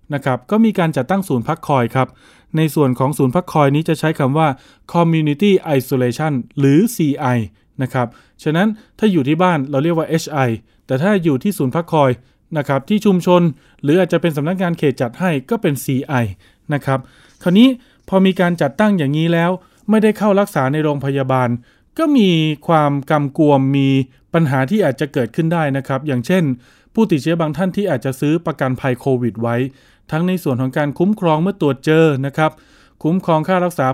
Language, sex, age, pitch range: Thai, male, 20-39, 135-180 Hz